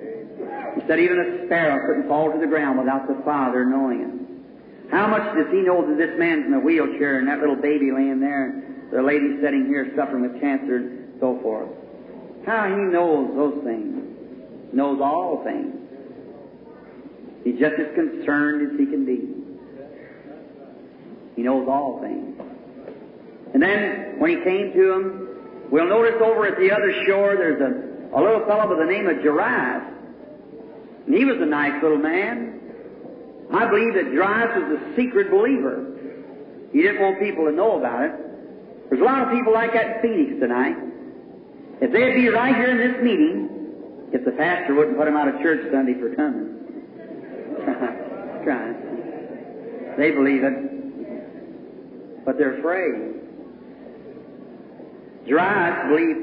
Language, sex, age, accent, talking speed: English, male, 50-69, American, 160 wpm